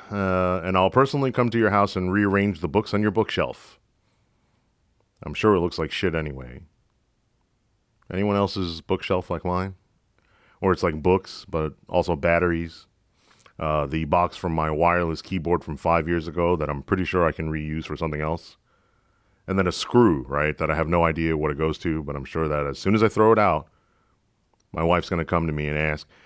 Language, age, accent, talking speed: English, 40-59, American, 205 wpm